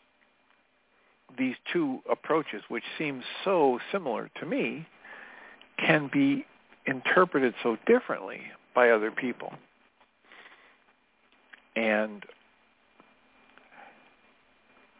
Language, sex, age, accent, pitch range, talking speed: English, male, 50-69, American, 120-155 Hz, 70 wpm